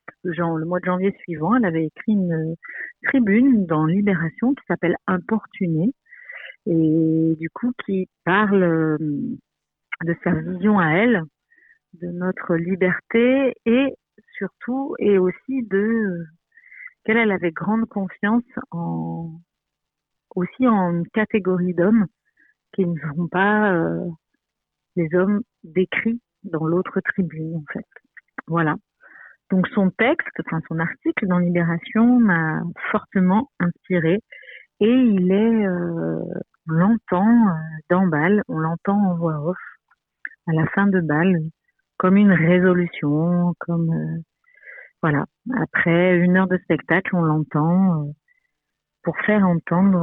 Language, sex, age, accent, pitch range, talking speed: French, female, 50-69, French, 165-210 Hz, 125 wpm